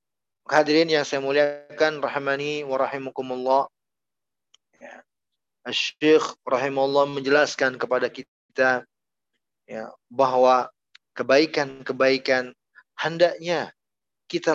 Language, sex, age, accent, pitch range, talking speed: Indonesian, male, 30-49, native, 130-165 Hz, 70 wpm